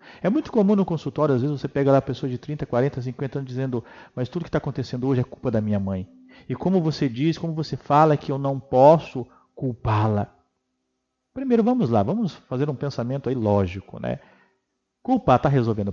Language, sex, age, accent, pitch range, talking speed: Portuguese, male, 40-59, Brazilian, 120-165 Hz, 205 wpm